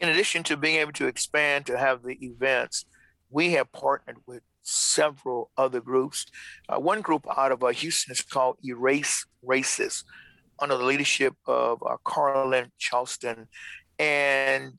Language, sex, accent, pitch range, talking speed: English, male, American, 130-160 Hz, 150 wpm